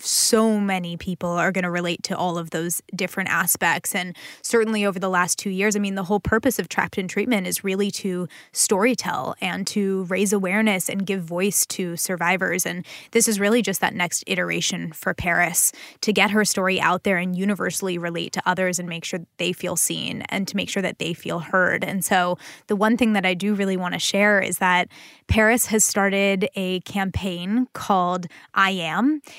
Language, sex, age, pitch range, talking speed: English, female, 10-29, 185-210 Hz, 205 wpm